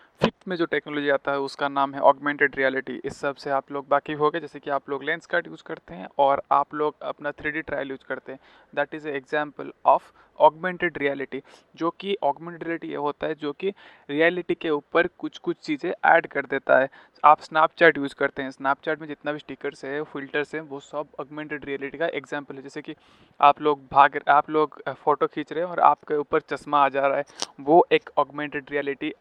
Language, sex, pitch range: Hindi, male, 140-155 Hz